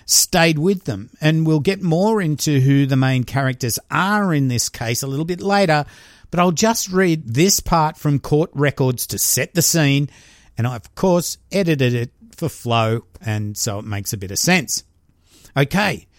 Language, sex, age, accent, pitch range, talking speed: English, male, 50-69, Australian, 125-160 Hz, 185 wpm